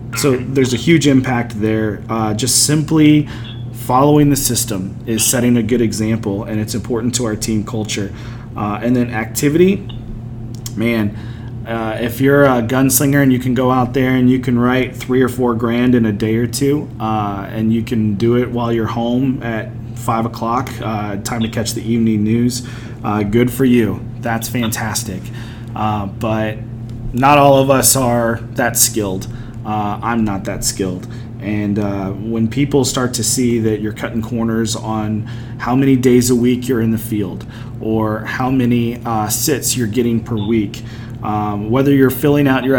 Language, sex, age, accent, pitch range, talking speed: English, male, 30-49, American, 115-130 Hz, 180 wpm